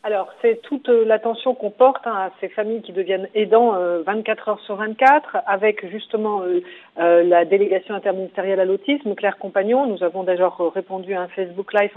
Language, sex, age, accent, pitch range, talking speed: French, female, 50-69, French, 195-245 Hz, 185 wpm